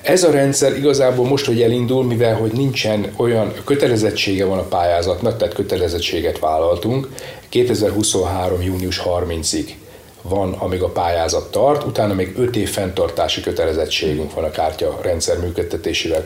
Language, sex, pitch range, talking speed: Hungarian, male, 95-135 Hz, 135 wpm